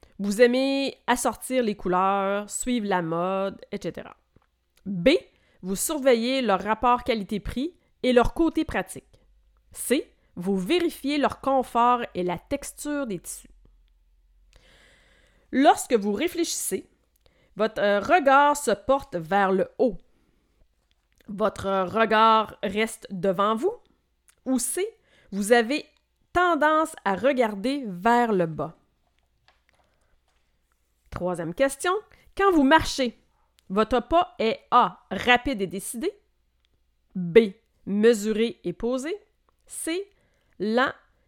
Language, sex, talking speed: French, female, 105 wpm